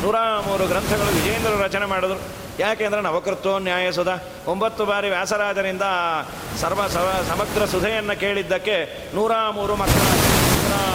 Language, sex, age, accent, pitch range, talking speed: Kannada, male, 40-59, native, 185-230 Hz, 115 wpm